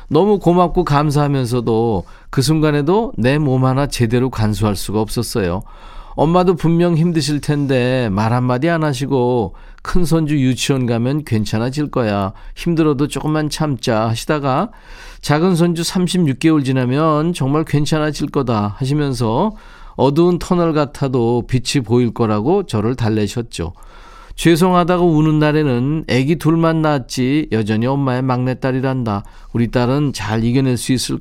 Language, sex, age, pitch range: Korean, male, 40-59, 120-155 Hz